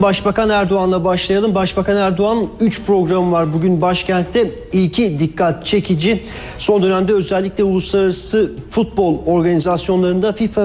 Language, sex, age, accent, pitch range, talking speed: Turkish, male, 40-59, native, 165-195 Hz, 115 wpm